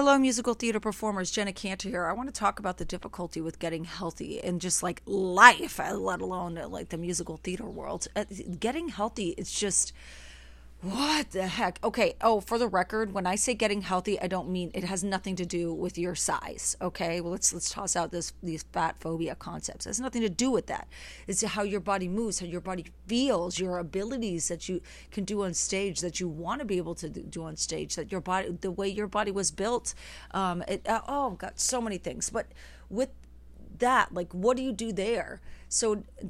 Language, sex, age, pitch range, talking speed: English, female, 30-49, 175-215 Hz, 215 wpm